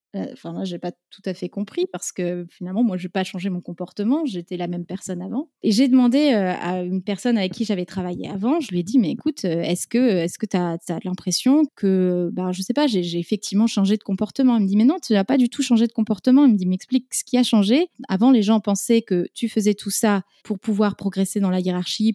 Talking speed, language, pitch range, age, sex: 255 wpm, French, 185-245 Hz, 20-39, female